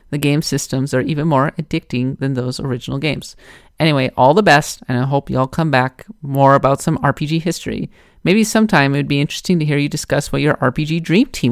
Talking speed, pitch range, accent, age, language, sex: 220 wpm, 130-175 Hz, American, 30-49, English, male